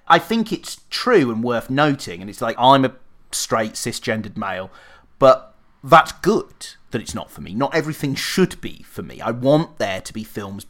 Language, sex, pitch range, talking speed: English, male, 115-150 Hz, 195 wpm